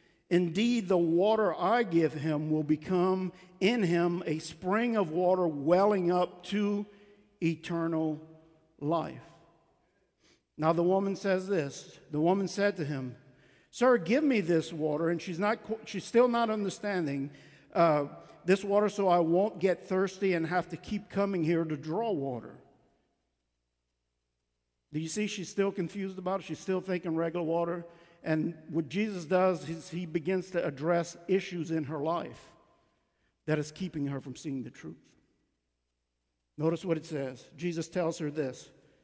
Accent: American